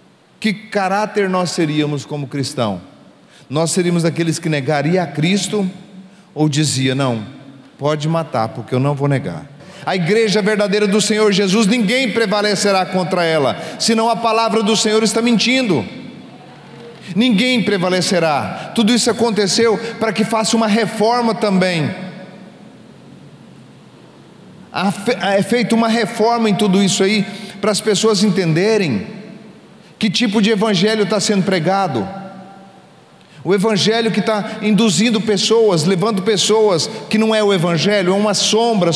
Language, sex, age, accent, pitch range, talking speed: Portuguese, male, 40-59, Brazilian, 185-220 Hz, 130 wpm